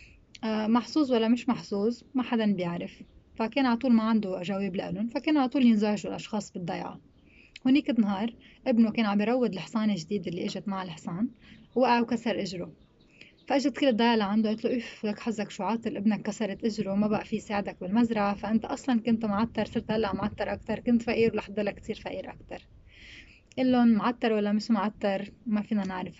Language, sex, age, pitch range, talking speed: Arabic, female, 20-39, 200-235 Hz, 175 wpm